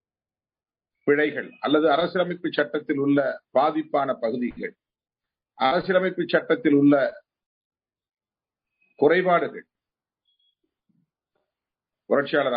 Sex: male